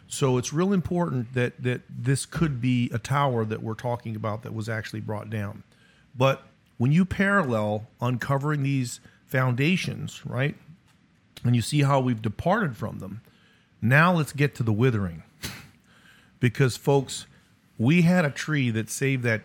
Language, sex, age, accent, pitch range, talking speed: English, male, 50-69, American, 110-140 Hz, 155 wpm